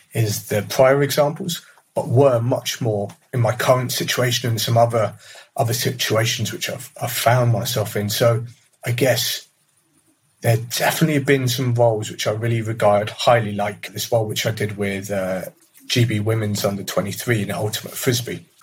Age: 30-49